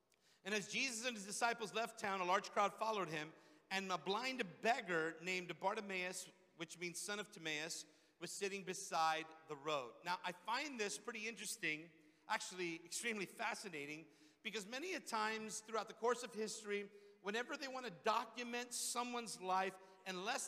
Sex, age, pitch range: male, 50-69, 165-215 Hz